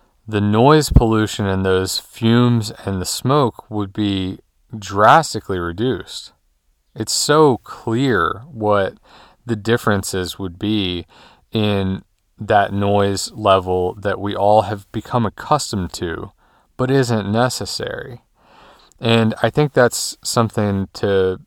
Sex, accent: male, American